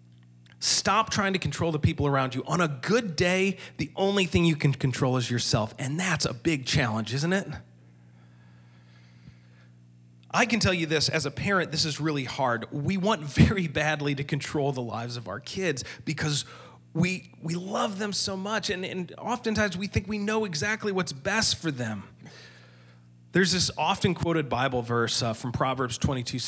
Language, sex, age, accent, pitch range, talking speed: Russian, male, 30-49, American, 120-185 Hz, 180 wpm